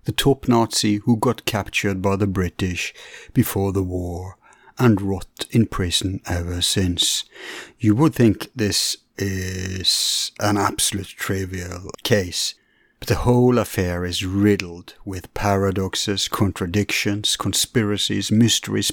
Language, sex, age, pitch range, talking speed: English, male, 60-79, 90-110 Hz, 120 wpm